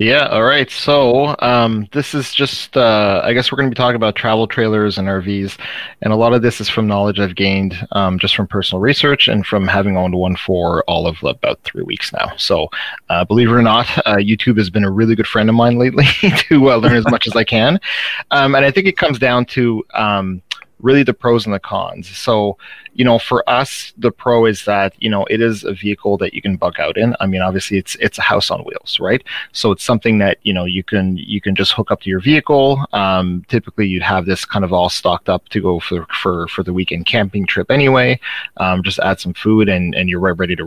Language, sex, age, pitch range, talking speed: English, male, 30-49, 95-120 Hz, 245 wpm